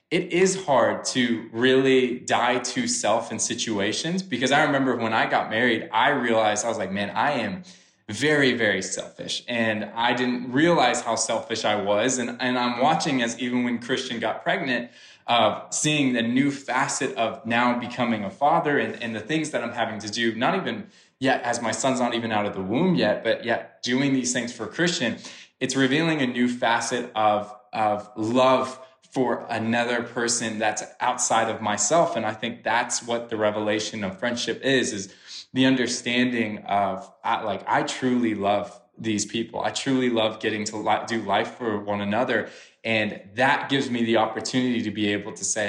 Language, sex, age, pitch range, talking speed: English, male, 20-39, 110-130 Hz, 185 wpm